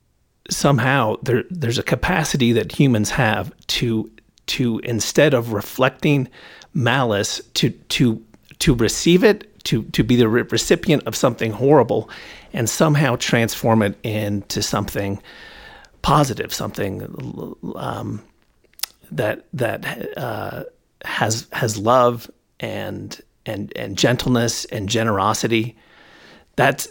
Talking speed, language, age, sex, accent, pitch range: 110 wpm, English, 40-59, male, American, 110-135 Hz